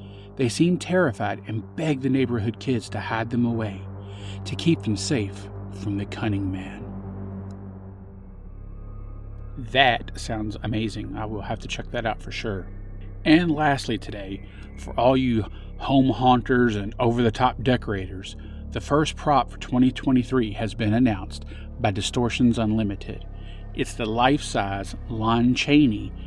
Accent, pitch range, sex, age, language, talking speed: American, 95-125 Hz, male, 40-59, English, 135 wpm